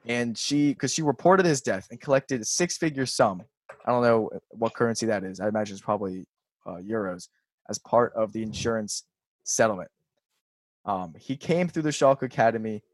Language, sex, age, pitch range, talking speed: English, male, 20-39, 115-170 Hz, 175 wpm